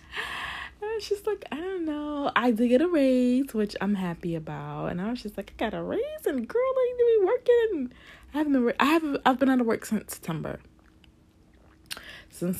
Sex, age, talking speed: female, 20-39, 210 wpm